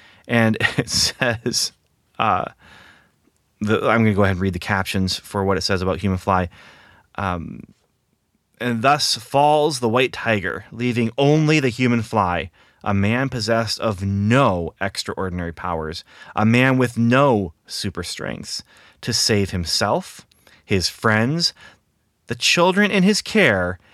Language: English